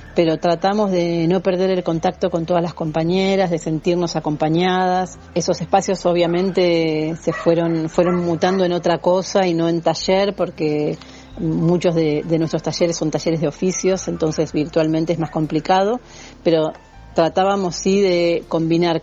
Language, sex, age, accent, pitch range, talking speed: Spanish, female, 40-59, Argentinian, 155-185 Hz, 150 wpm